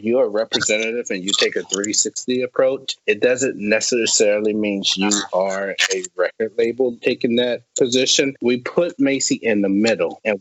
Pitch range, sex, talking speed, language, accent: 100-125 Hz, male, 160 wpm, English, American